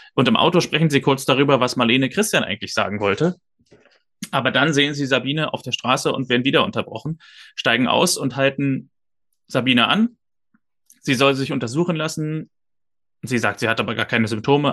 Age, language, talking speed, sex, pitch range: 30-49, German, 180 wpm, male, 115-135 Hz